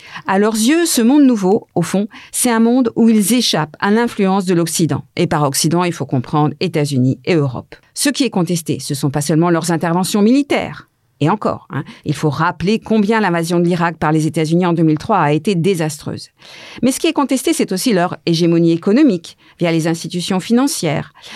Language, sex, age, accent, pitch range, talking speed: French, female, 50-69, French, 155-210 Hz, 195 wpm